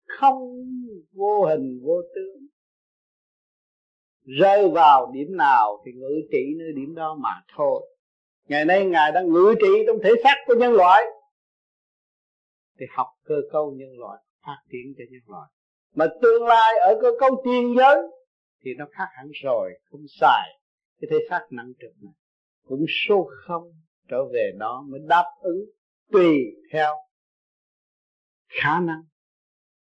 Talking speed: 150 wpm